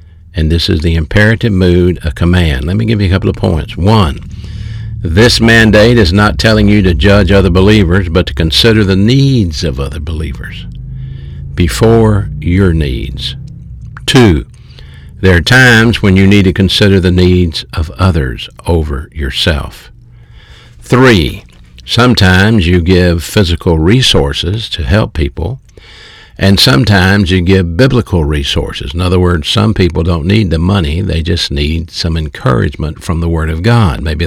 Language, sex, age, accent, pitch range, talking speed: English, male, 60-79, American, 80-105 Hz, 155 wpm